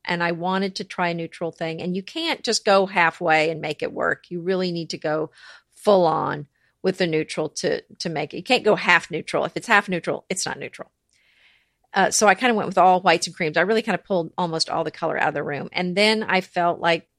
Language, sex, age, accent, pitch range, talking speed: English, female, 40-59, American, 165-200 Hz, 255 wpm